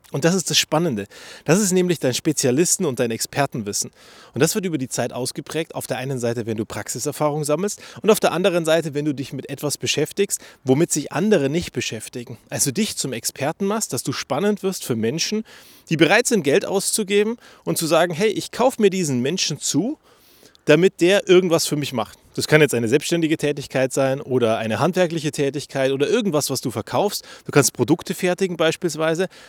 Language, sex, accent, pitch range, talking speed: German, male, German, 125-175 Hz, 195 wpm